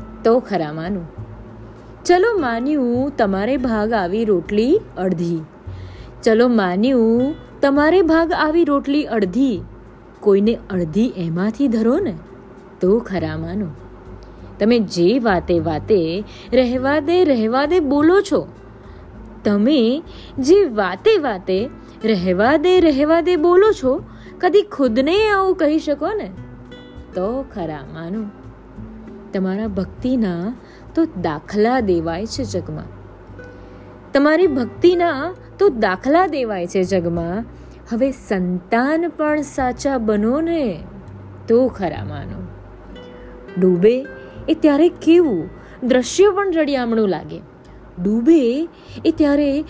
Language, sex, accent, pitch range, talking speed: Gujarati, female, native, 175-290 Hz, 55 wpm